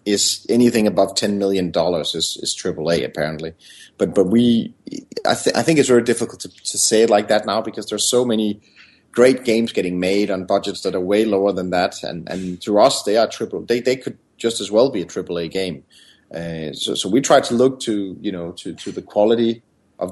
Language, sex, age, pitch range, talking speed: English, male, 30-49, 85-110 Hz, 230 wpm